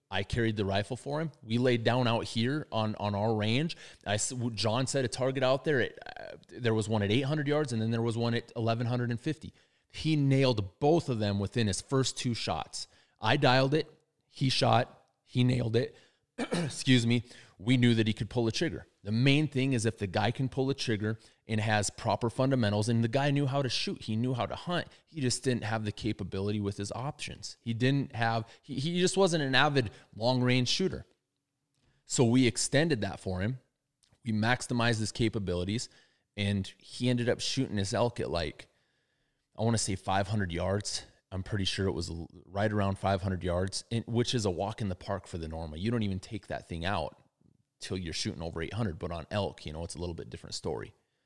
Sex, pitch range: male, 100-130 Hz